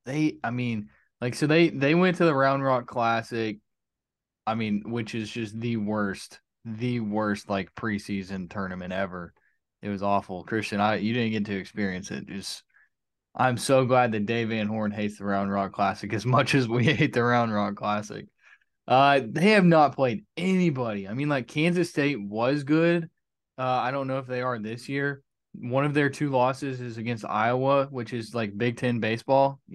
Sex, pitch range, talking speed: male, 105-130 Hz, 190 wpm